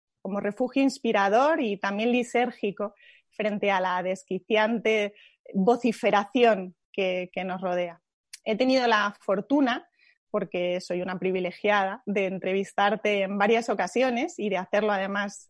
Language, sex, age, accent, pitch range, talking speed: Spanish, female, 20-39, Spanish, 200-240 Hz, 125 wpm